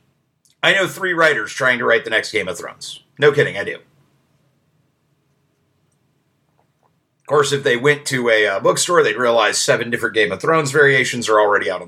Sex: male